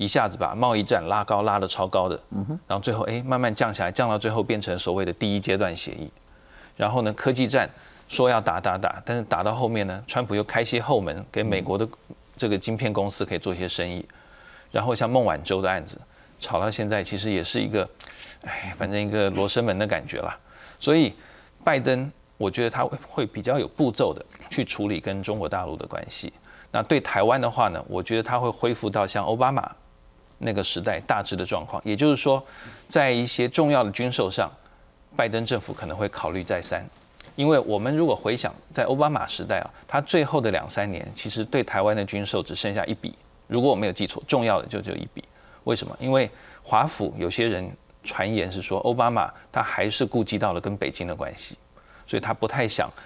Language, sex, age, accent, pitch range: Chinese, male, 20-39, native, 95-120 Hz